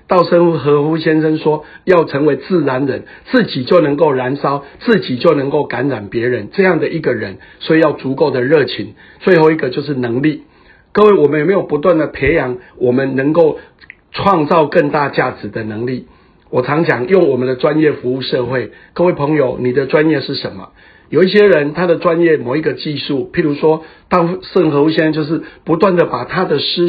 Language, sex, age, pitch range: Chinese, male, 60-79, 135-170 Hz